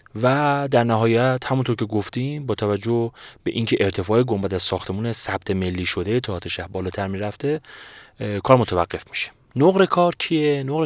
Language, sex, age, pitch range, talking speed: Persian, male, 30-49, 90-125 Hz, 150 wpm